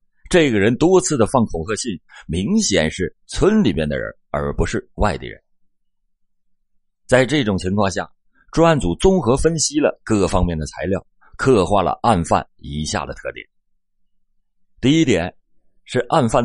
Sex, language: male, Chinese